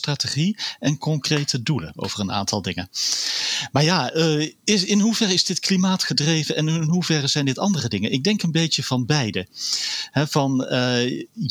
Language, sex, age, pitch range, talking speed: Dutch, male, 40-59, 115-150 Hz, 170 wpm